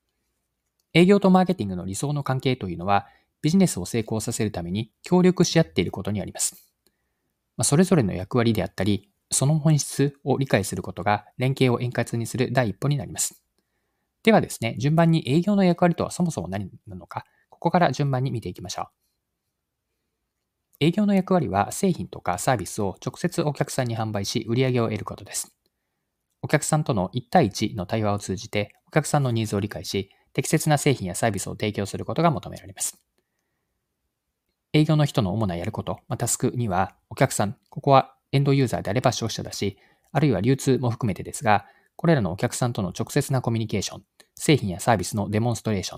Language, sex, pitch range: Japanese, male, 105-145 Hz